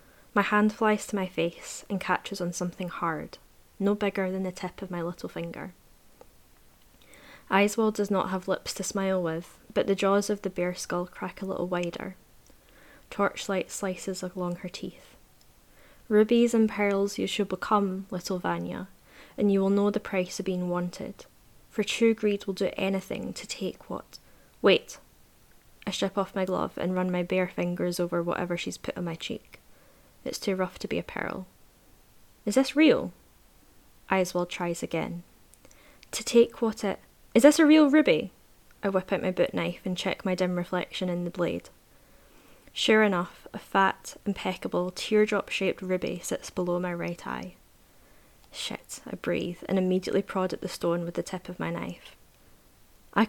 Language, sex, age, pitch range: English, female, 10-29, 175-205 Hz